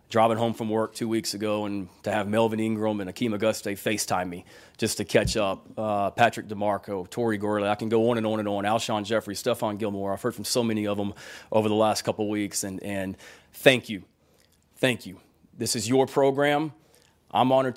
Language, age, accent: English, 30-49, American